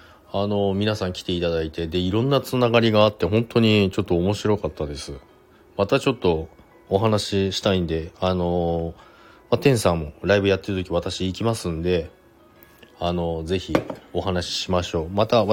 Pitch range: 90-110 Hz